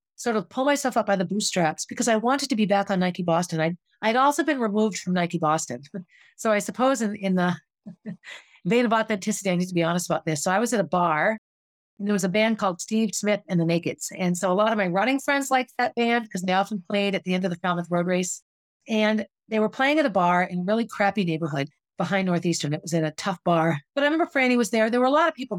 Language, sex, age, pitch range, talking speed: English, female, 40-59, 175-225 Hz, 265 wpm